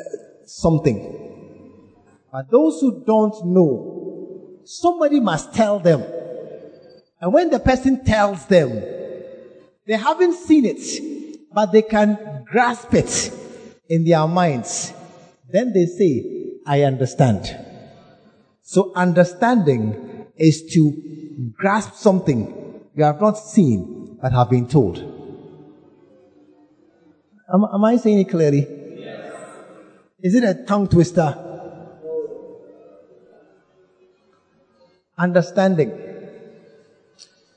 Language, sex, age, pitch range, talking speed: English, male, 50-69, 155-220 Hz, 95 wpm